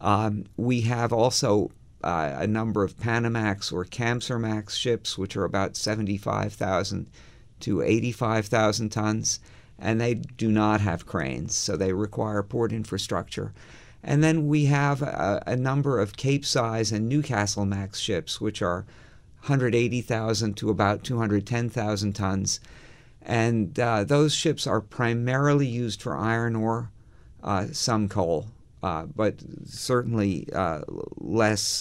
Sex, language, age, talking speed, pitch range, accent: male, English, 50-69, 130 wpm, 105-120 Hz, American